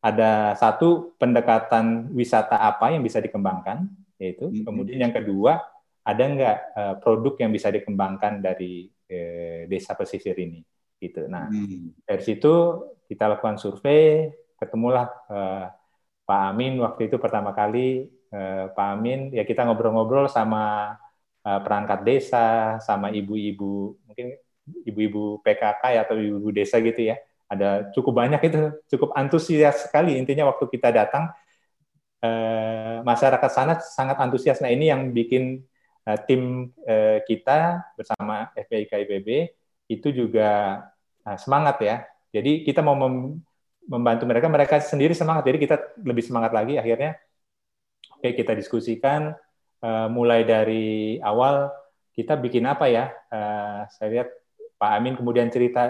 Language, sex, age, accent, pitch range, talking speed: Indonesian, male, 30-49, native, 105-135 Hz, 135 wpm